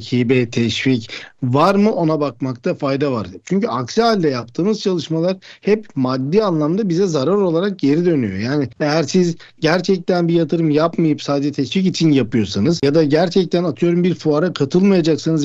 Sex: male